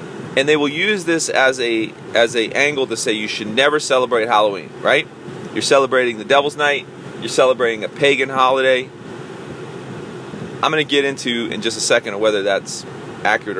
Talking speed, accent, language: 175 wpm, American, English